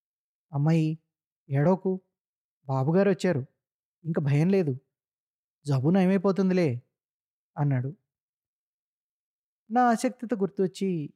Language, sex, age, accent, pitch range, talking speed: Telugu, male, 20-39, native, 130-165 Hz, 70 wpm